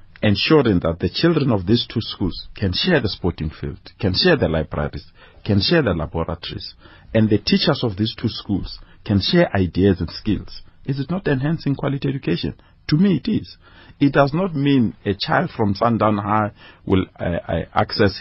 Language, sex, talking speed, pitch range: English, male, 180 wpm, 90-125 Hz